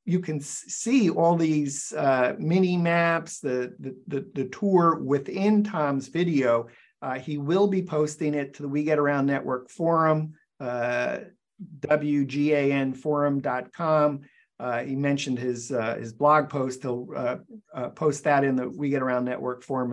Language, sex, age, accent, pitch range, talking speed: English, male, 50-69, American, 130-150 Hz, 155 wpm